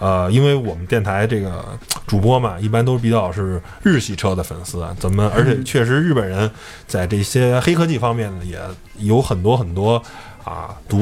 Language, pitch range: Chinese, 95-125 Hz